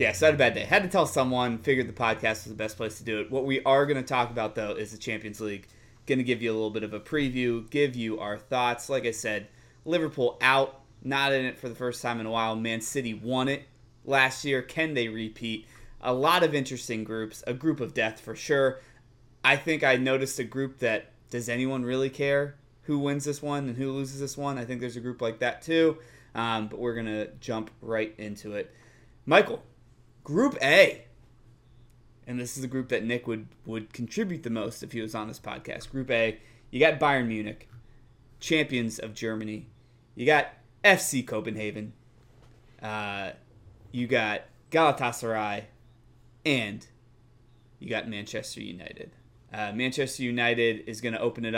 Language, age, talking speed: English, 20-39, 200 wpm